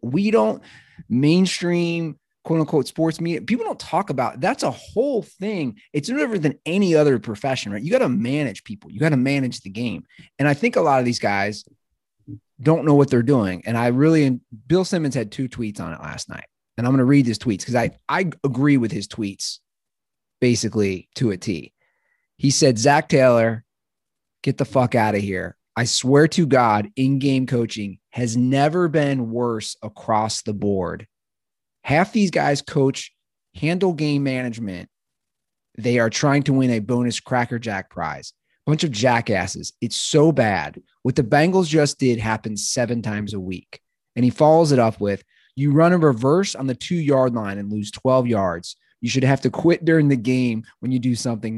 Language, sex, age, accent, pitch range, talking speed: English, male, 30-49, American, 110-150 Hz, 190 wpm